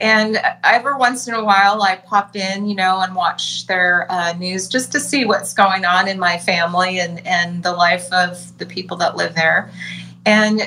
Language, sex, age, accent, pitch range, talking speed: English, female, 30-49, American, 180-210 Hz, 200 wpm